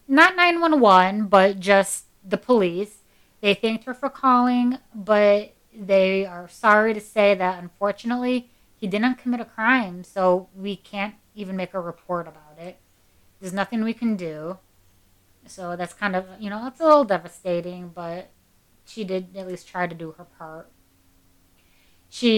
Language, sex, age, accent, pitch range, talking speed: English, female, 30-49, American, 180-225 Hz, 160 wpm